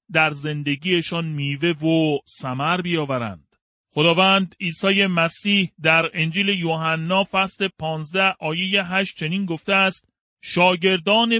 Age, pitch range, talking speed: 30-49, 150-190 Hz, 100 wpm